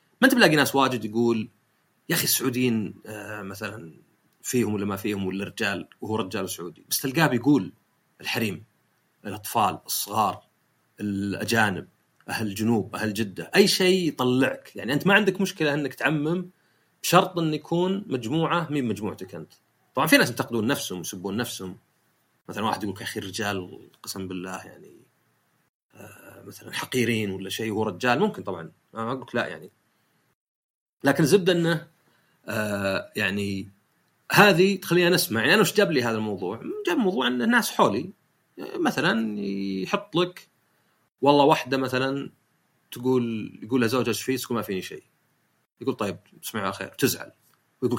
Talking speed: 145 wpm